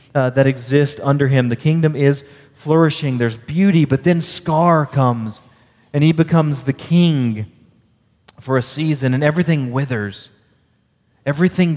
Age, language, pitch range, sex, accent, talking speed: 30-49, English, 115-150 Hz, male, American, 140 wpm